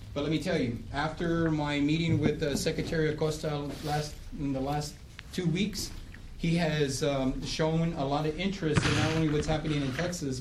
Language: English